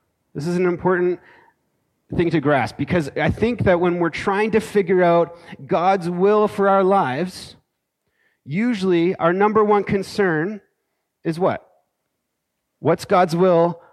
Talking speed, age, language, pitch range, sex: 140 wpm, 30-49, English, 155-190 Hz, male